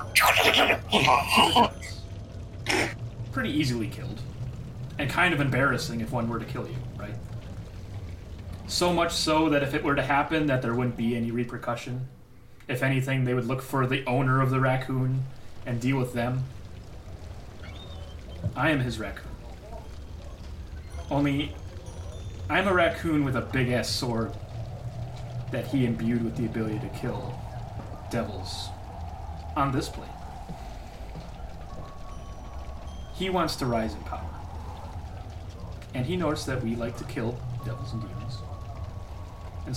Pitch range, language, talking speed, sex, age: 90-125 Hz, English, 130 wpm, male, 30-49